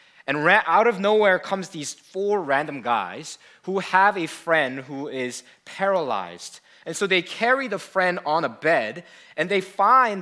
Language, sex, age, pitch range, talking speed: English, male, 20-39, 150-205 Hz, 165 wpm